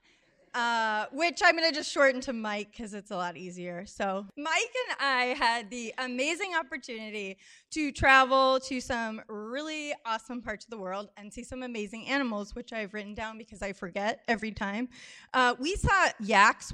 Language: English